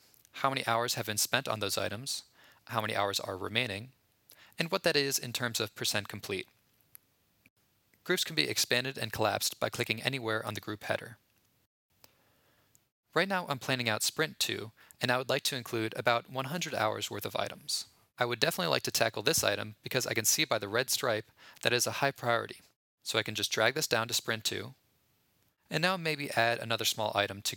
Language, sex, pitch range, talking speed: English, male, 110-135 Hz, 205 wpm